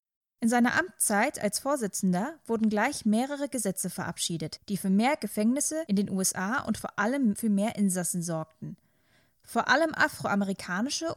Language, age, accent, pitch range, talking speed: German, 20-39, German, 195-265 Hz, 145 wpm